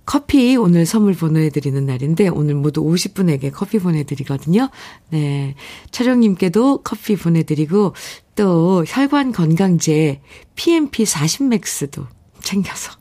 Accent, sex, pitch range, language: native, female, 155-220 Hz, Korean